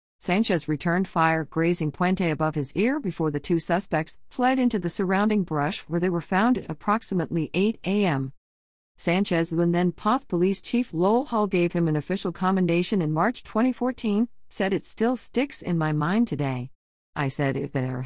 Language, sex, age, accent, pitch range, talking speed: English, female, 50-69, American, 140-185 Hz, 175 wpm